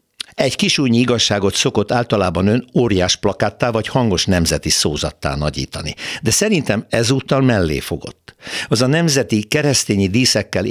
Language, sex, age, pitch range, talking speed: Hungarian, male, 60-79, 90-130 Hz, 130 wpm